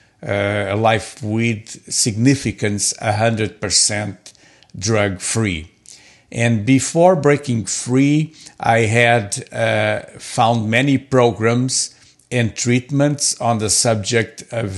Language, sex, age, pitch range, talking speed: English, male, 50-69, 110-135 Hz, 105 wpm